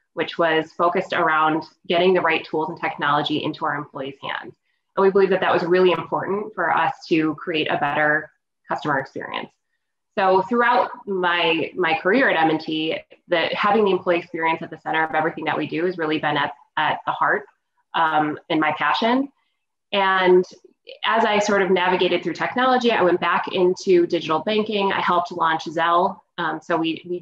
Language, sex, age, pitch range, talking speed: English, female, 20-39, 160-190 Hz, 185 wpm